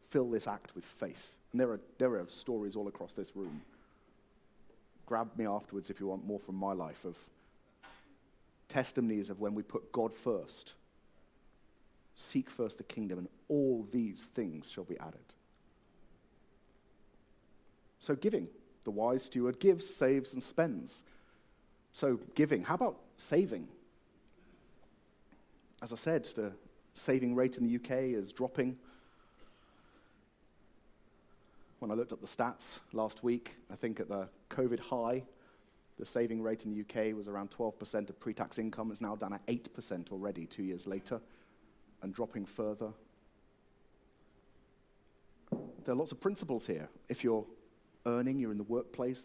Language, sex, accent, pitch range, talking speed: English, male, British, 105-135 Hz, 145 wpm